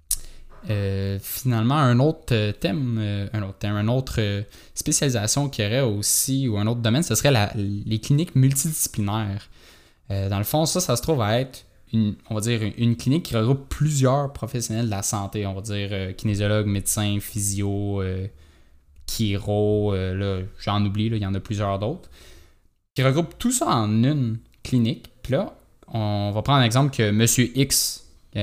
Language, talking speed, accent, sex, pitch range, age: French, 180 wpm, Canadian, male, 100-125 Hz, 20-39